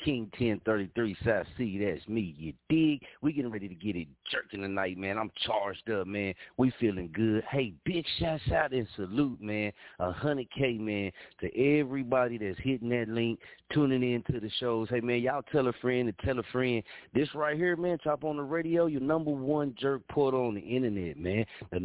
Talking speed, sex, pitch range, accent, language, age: 200 wpm, male, 100-125 Hz, American, English, 30-49